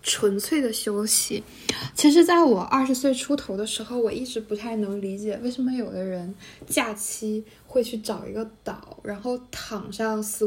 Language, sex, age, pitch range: Chinese, female, 20-39, 200-240 Hz